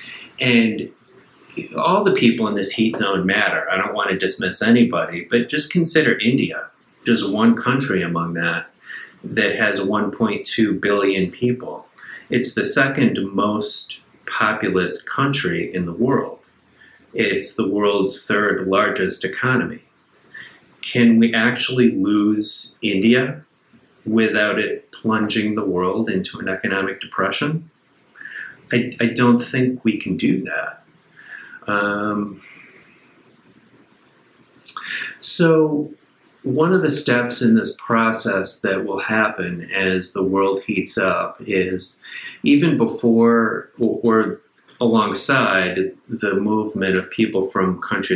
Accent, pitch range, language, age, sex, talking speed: American, 95-120 Hz, English, 30-49, male, 120 wpm